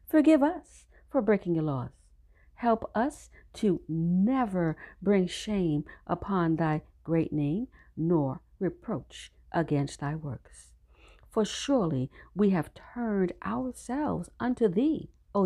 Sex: female